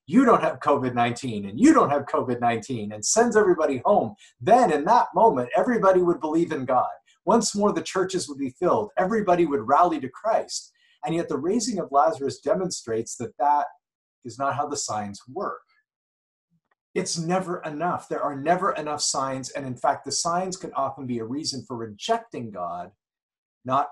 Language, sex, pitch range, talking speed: English, male, 125-180 Hz, 180 wpm